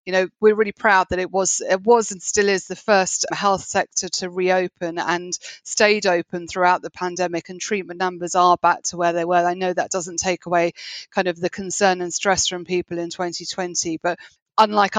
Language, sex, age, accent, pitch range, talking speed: English, female, 30-49, British, 175-205 Hz, 210 wpm